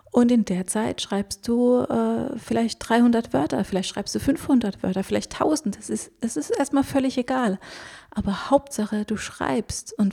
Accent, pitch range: German, 195-230 Hz